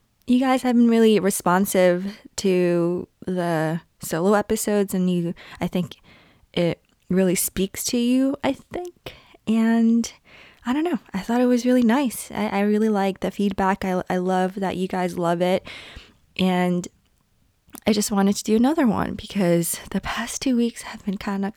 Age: 20-39